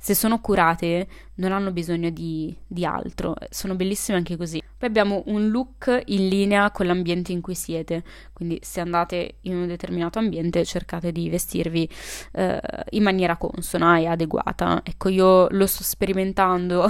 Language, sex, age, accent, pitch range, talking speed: Italian, female, 20-39, native, 175-205 Hz, 160 wpm